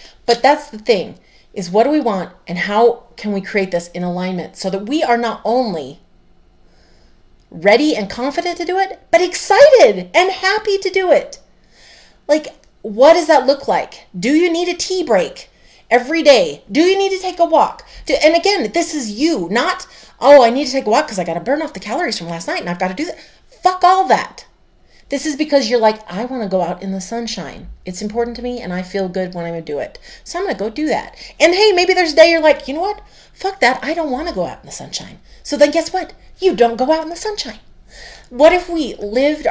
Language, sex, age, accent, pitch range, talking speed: English, female, 30-49, American, 210-340 Hz, 245 wpm